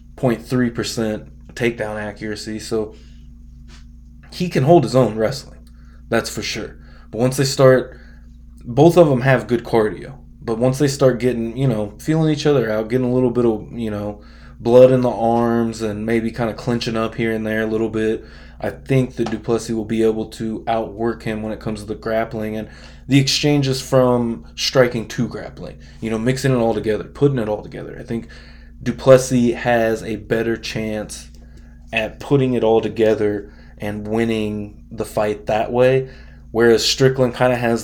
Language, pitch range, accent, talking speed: English, 105-125 Hz, American, 180 wpm